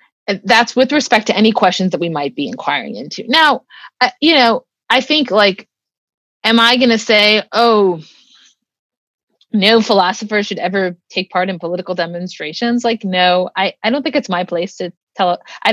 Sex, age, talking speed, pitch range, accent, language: female, 30-49, 175 wpm, 185-250 Hz, American, English